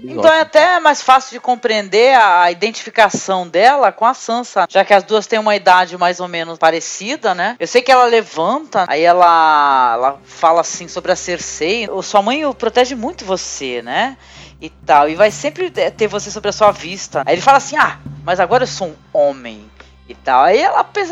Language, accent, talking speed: Portuguese, Brazilian, 200 wpm